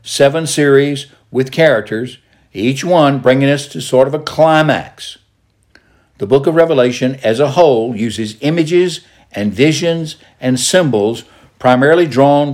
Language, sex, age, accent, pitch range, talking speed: English, male, 60-79, American, 110-140 Hz, 135 wpm